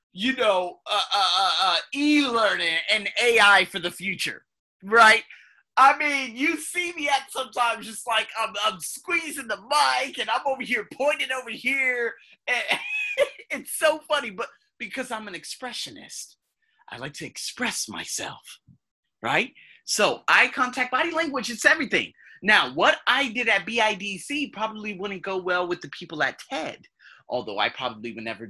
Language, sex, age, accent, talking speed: English, male, 30-49, American, 160 wpm